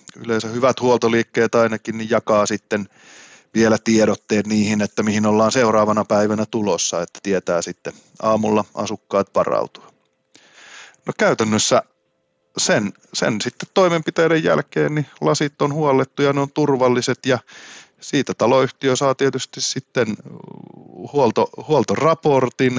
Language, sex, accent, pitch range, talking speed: Finnish, male, native, 105-135 Hz, 110 wpm